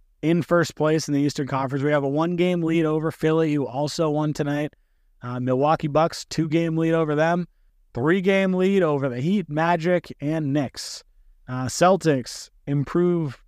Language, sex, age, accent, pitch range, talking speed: English, male, 30-49, American, 135-170 Hz, 160 wpm